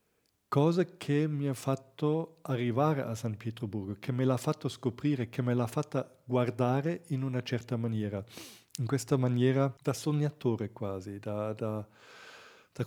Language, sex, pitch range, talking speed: Italian, male, 115-130 Hz, 145 wpm